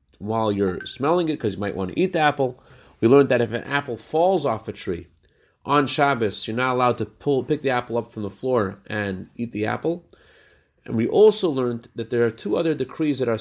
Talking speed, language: 235 wpm, English